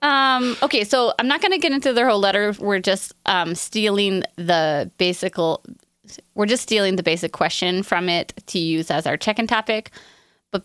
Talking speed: 185 wpm